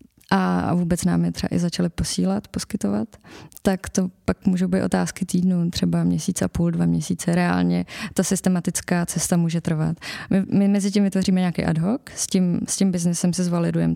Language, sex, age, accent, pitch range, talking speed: Czech, female, 20-39, native, 175-195 Hz, 185 wpm